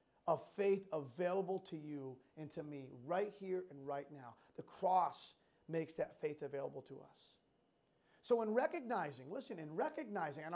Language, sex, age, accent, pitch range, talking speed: English, male, 30-49, American, 170-235 Hz, 160 wpm